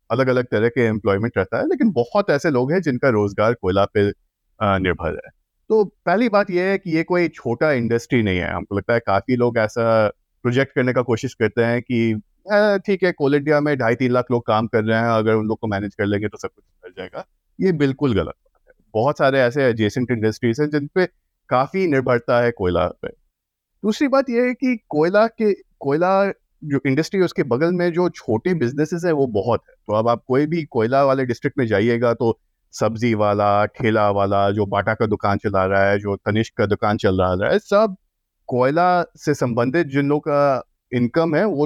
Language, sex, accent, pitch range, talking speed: Hindi, male, native, 110-165 Hz, 205 wpm